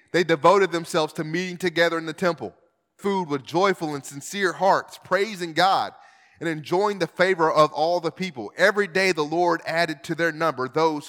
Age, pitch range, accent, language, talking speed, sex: 30-49, 165-220 Hz, American, English, 185 wpm, male